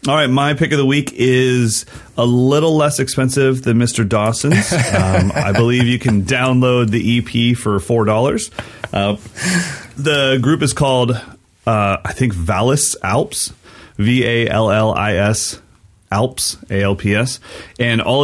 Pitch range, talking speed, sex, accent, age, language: 95-115 Hz, 130 wpm, male, American, 30-49, English